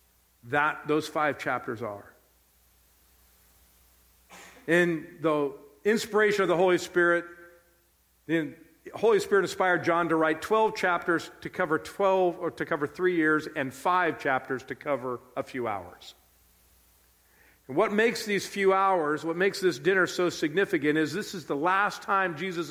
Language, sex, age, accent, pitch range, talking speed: English, male, 50-69, American, 135-190 Hz, 150 wpm